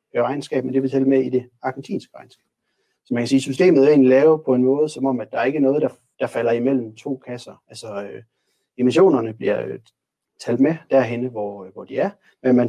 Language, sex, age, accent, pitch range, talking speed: Danish, male, 30-49, native, 115-135 Hz, 230 wpm